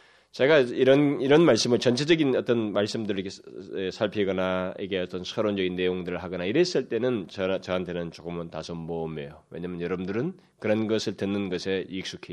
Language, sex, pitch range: Korean, male, 85-125 Hz